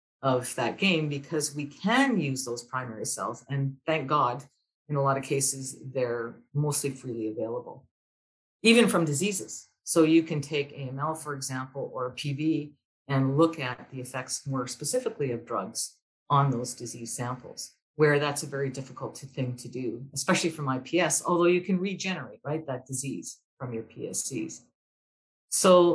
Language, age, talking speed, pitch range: English, 50-69, 160 wpm, 130-160 Hz